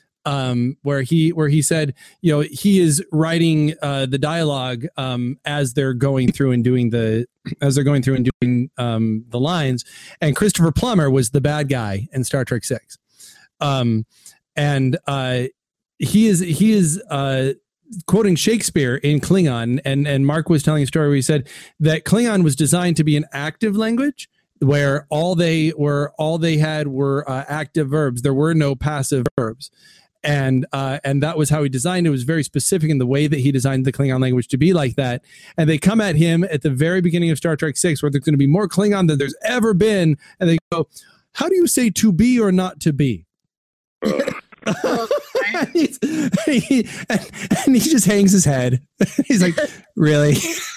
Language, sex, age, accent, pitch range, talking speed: English, male, 30-49, American, 135-175 Hz, 195 wpm